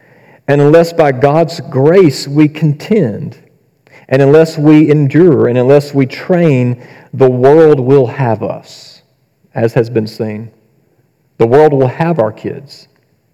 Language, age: English, 40-59